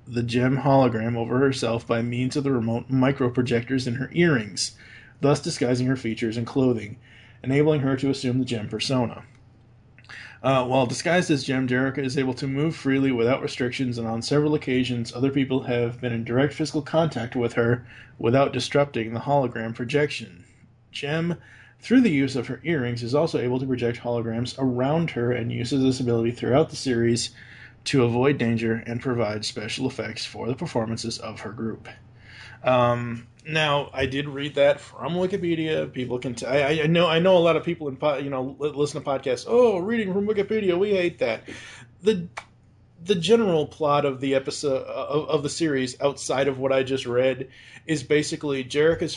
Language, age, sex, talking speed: English, 20-39, male, 180 wpm